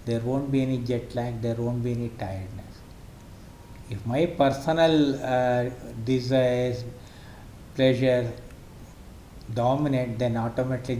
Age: 60-79